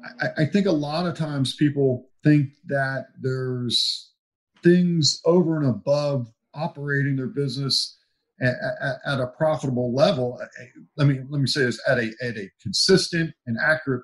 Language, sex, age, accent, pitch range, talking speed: English, male, 50-69, American, 125-155 Hz, 160 wpm